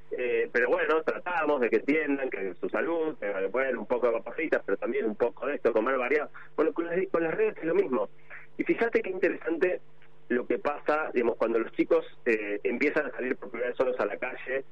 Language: Spanish